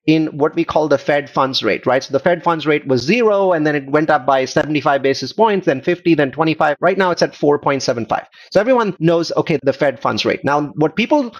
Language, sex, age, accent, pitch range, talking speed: English, male, 30-49, Indian, 140-190 Hz, 235 wpm